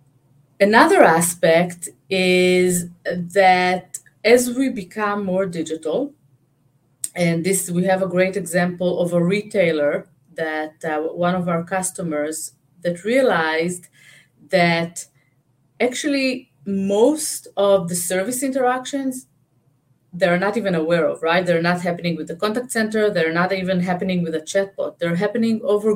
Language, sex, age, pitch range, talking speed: English, female, 30-49, 165-215 Hz, 130 wpm